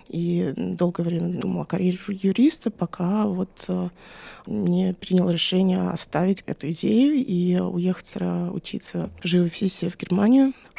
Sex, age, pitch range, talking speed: female, 20-39, 175-200 Hz, 115 wpm